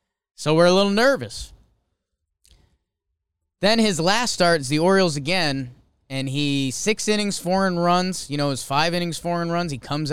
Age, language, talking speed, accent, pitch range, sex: 20-39, English, 190 wpm, American, 125-190 Hz, male